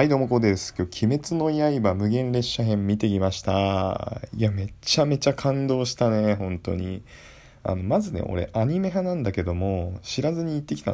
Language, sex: Japanese, male